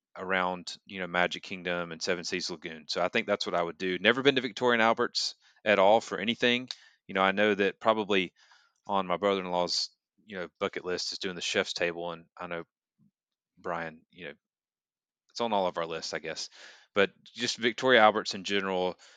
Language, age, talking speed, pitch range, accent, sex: English, 30-49, 200 wpm, 90-110 Hz, American, male